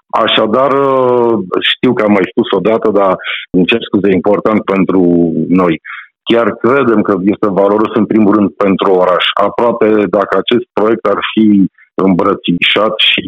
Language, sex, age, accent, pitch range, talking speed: Romanian, male, 50-69, native, 95-115 Hz, 145 wpm